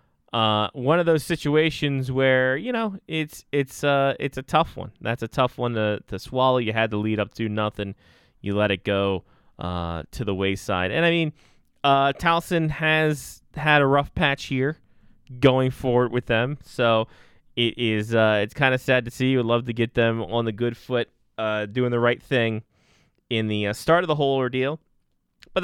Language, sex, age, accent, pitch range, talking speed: English, male, 20-39, American, 110-145 Hz, 200 wpm